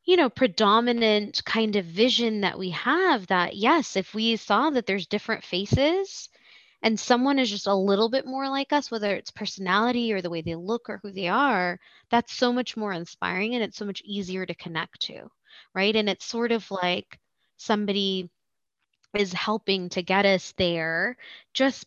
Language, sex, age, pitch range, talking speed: English, female, 20-39, 190-235 Hz, 185 wpm